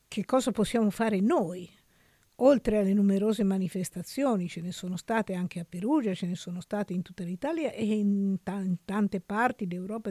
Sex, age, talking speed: female, 50-69, 170 wpm